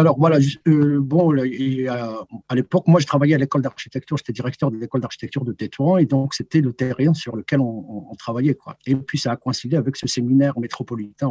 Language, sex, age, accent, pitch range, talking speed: French, male, 50-69, French, 115-145 Hz, 225 wpm